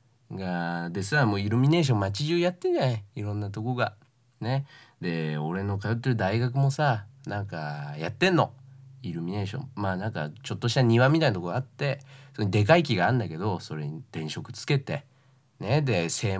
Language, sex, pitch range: Japanese, male, 100-135 Hz